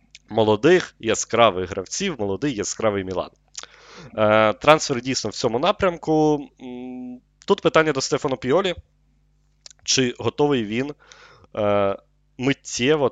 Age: 30-49